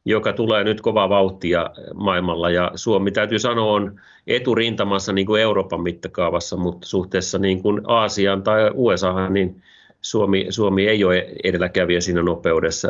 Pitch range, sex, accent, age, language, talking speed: 90-105 Hz, male, native, 30-49, Finnish, 140 wpm